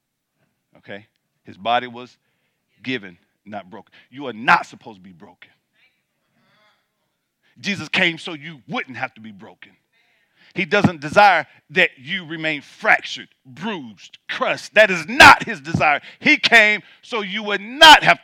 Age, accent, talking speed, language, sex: 50-69, American, 145 wpm, English, male